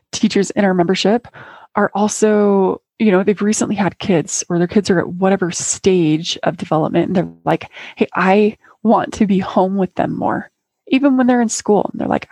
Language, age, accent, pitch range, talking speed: English, 20-39, American, 185-255 Hz, 200 wpm